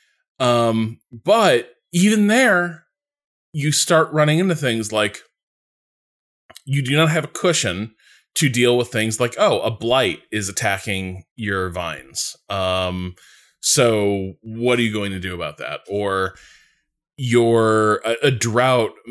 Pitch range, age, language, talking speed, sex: 100-145 Hz, 20-39, English, 135 wpm, male